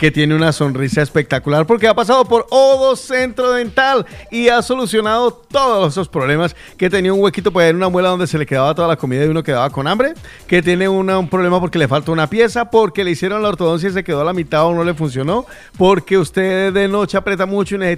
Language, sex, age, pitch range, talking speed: Spanish, male, 40-59, 155-225 Hz, 235 wpm